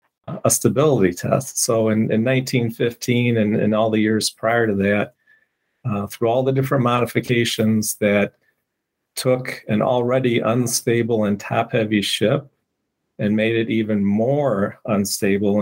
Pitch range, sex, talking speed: 105-120 Hz, male, 140 wpm